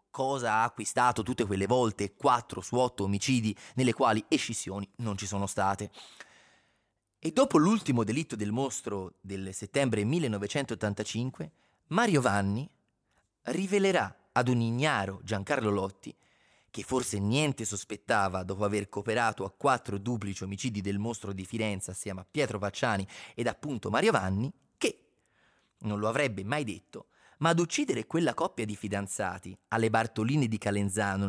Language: Italian